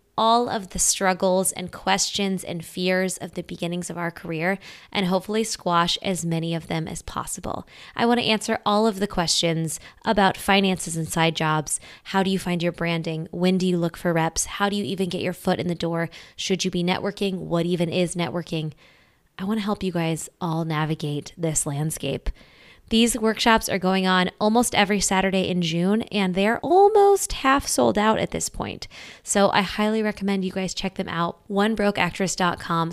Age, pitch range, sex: 20-39, 170-205 Hz, female